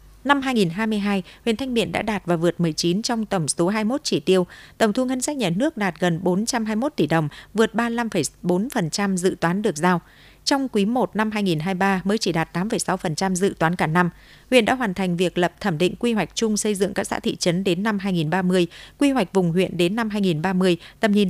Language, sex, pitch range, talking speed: Vietnamese, female, 175-225 Hz, 210 wpm